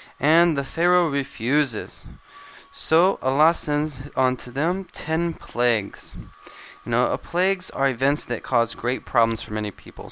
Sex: male